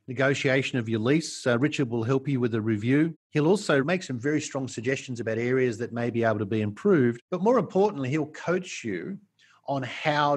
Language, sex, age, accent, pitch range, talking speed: English, male, 50-69, Australian, 120-145 Hz, 210 wpm